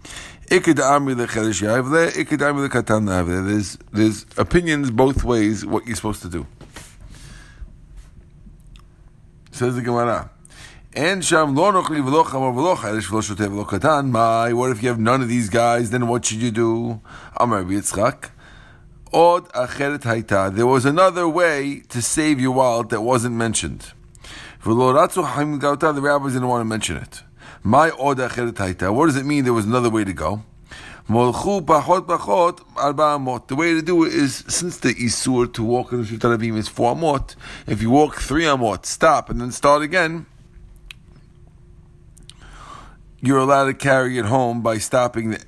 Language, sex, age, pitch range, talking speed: English, male, 50-69, 110-145 Hz, 120 wpm